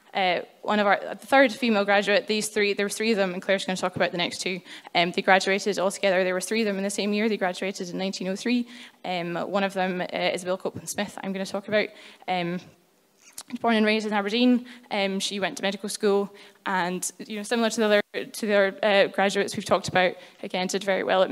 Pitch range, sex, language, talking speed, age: 195-220 Hz, female, English, 245 wpm, 10-29